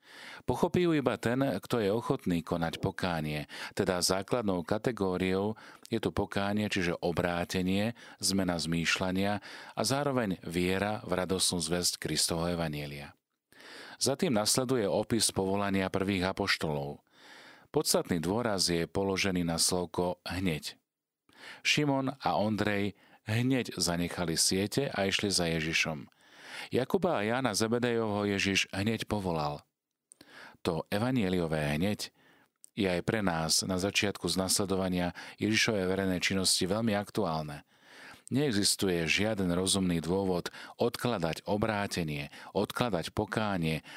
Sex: male